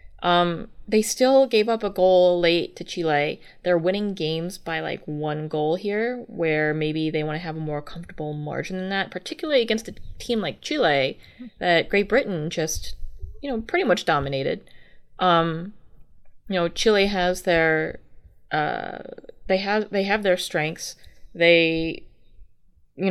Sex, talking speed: female, 155 wpm